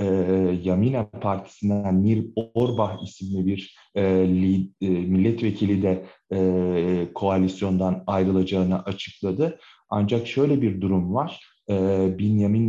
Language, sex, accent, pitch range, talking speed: Turkish, male, native, 95-120 Hz, 95 wpm